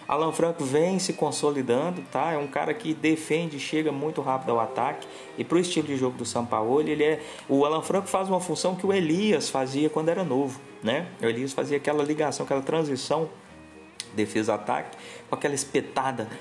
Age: 20-39